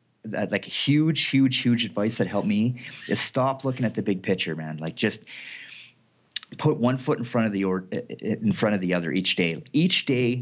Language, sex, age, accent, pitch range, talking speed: English, male, 30-49, American, 100-135 Hz, 205 wpm